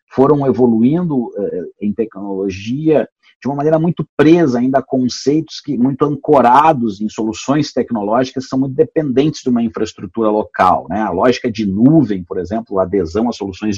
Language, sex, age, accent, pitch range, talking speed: Portuguese, male, 50-69, Brazilian, 100-135 Hz, 160 wpm